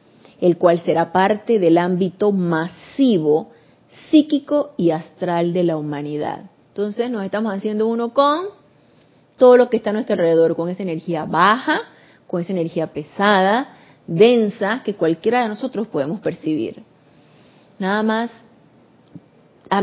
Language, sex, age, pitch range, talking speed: Spanish, female, 30-49, 175-235 Hz, 135 wpm